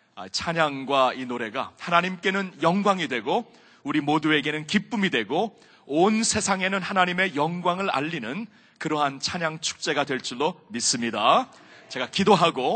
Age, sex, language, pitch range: 40-59, male, Korean, 155-195 Hz